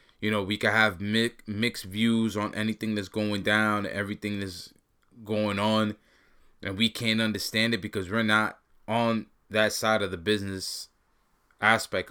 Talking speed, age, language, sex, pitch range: 155 wpm, 20-39, English, male, 100-115 Hz